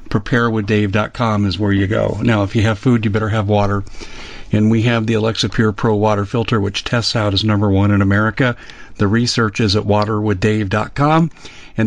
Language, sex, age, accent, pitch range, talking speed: English, male, 50-69, American, 105-130 Hz, 185 wpm